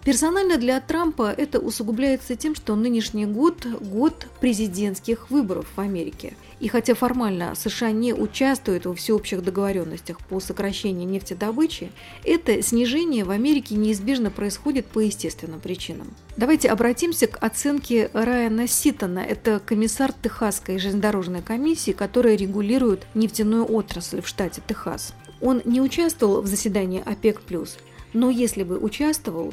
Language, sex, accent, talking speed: Russian, female, native, 130 wpm